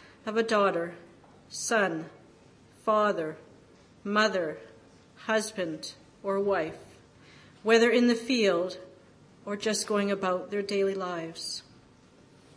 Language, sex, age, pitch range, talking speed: English, female, 40-59, 185-220 Hz, 95 wpm